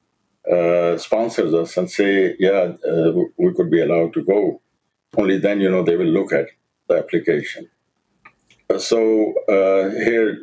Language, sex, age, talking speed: English, male, 60-79, 160 wpm